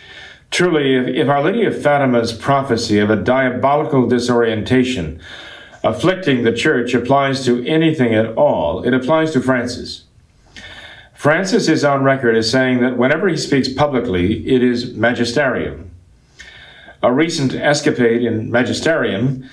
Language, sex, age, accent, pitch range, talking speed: English, male, 50-69, American, 120-145 Hz, 130 wpm